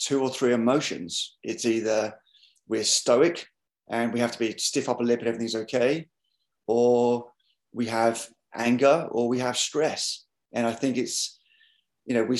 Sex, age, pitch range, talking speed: male, 30-49, 120-150 Hz, 165 wpm